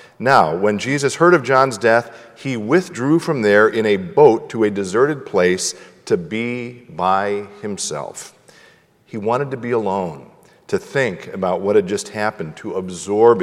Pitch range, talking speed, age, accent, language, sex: 105-155 Hz, 160 wpm, 50-69, American, English, male